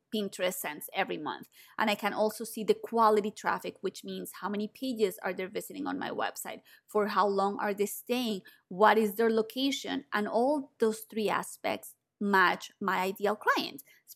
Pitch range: 205-240 Hz